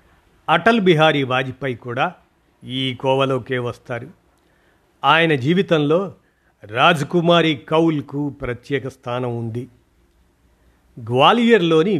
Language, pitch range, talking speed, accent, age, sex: Telugu, 120-155 Hz, 80 wpm, native, 50-69, male